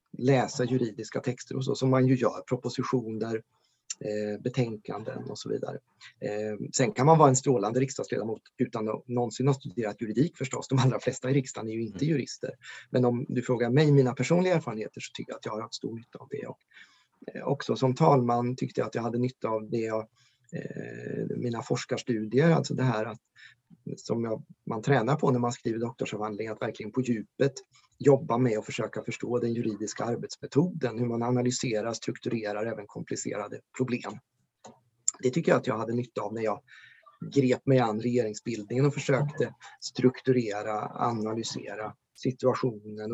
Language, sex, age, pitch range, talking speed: English, male, 30-49, 115-135 Hz, 170 wpm